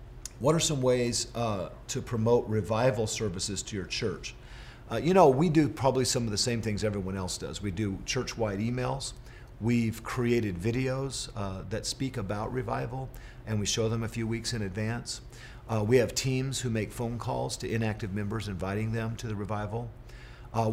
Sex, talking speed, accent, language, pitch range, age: male, 185 wpm, American, English, 105-125 Hz, 50-69